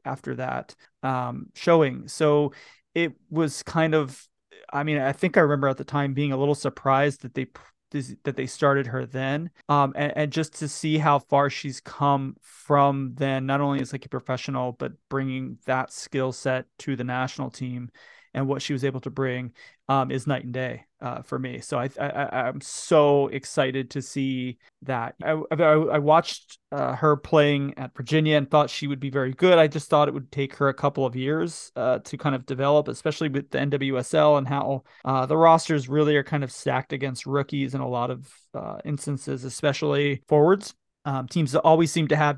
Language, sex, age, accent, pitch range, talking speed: English, male, 20-39, American, 135-150 Hz, 200 wpm